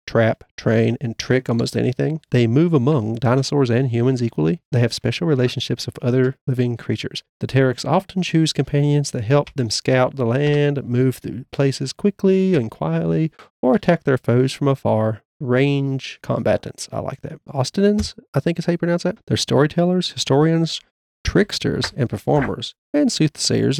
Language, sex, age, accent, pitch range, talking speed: English, male, 40-59, American, 120-140 Hz, 165 wpm